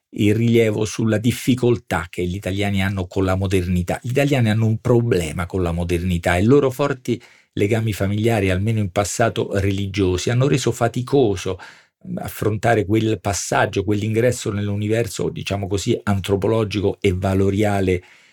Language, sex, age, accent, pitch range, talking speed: Italian, male, 50-69, native, 95-120 Hz, 140 wpm